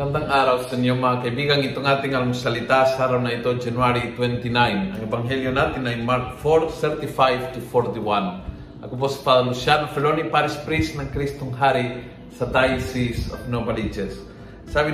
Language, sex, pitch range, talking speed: Filipino, male, 125-155 Hz, 155 wpm